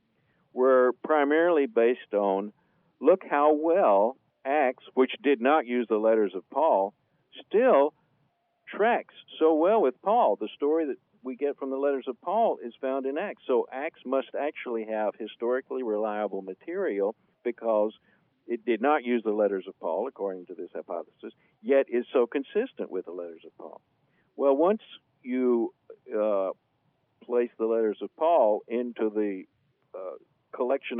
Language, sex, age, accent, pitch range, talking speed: English, male, 50-69, American, 105-155 Hz, 155 wpm